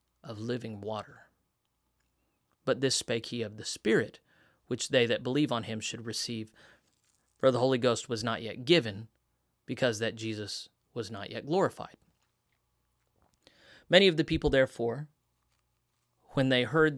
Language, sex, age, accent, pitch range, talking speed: English, male, 30-49, American, 115-150 Hz, 145 wpm